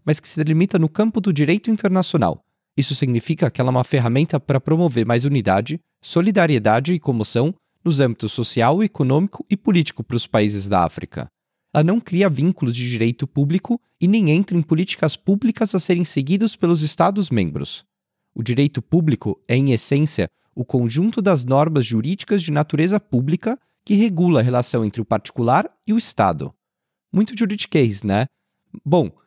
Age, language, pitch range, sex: 30-49, Portuguese, 130-185 Hz, male